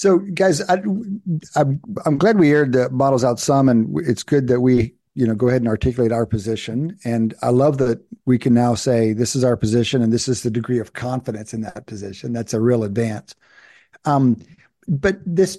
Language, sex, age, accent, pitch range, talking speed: English, male, 50-69, American, 120-155 Hz, 205 wpm